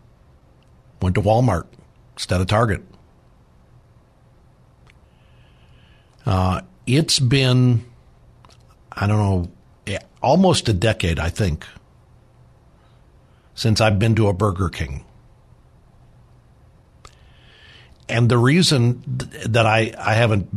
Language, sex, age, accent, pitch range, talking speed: English, male, 60-79, American, 100-120 Hz, 90 wpm